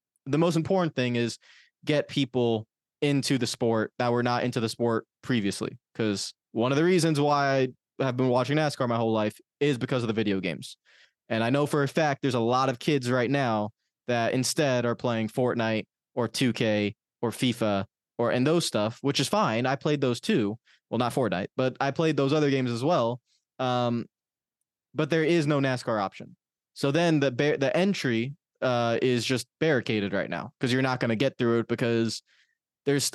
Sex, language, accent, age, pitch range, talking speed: male, English, American, 20-39, 115-145 Hz, 195 wpm